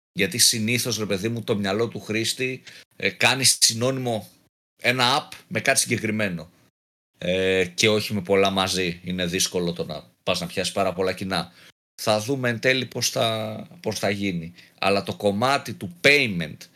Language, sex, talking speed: Greek, male, 170 wpm